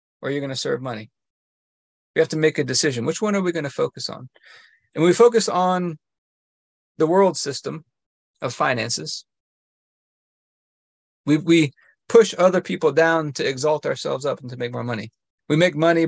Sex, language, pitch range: male, English, 135-170 Hz